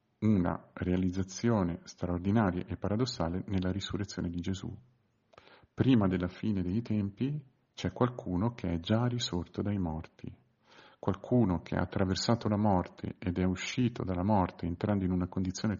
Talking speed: 140 wpm